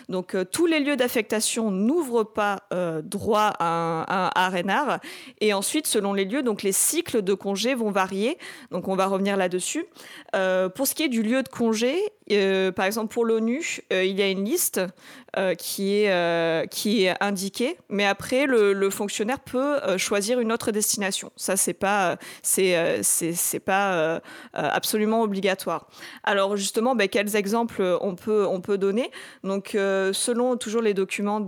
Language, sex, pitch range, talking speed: French, female, 190-235 Hz, 175 wpm